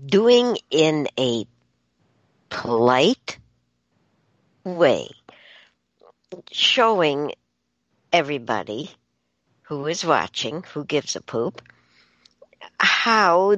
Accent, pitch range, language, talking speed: American, 110-155 Hz, English, 65 wpm